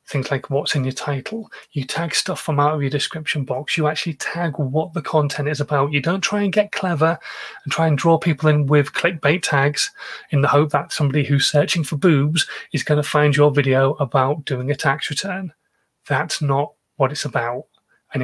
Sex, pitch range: male, 140-165 Hz